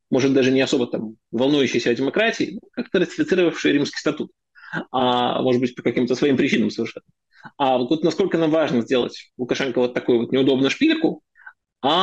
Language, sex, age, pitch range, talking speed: Russian, male, 20-39, 120-140 Hz, 175 wpm